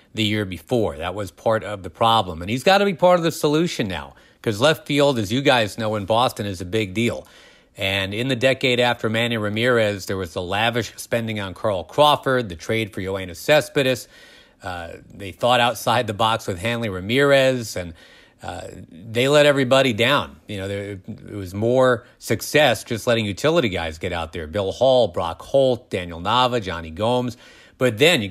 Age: 40-59